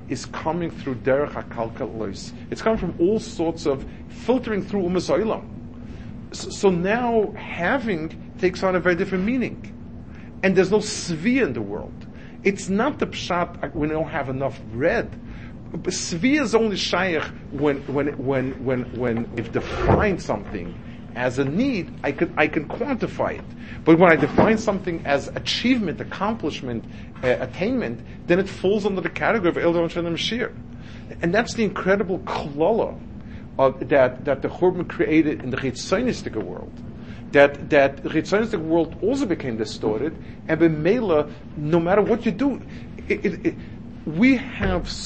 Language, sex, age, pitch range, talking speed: English, male, 50-69, 120-190 Hz, 140 wpm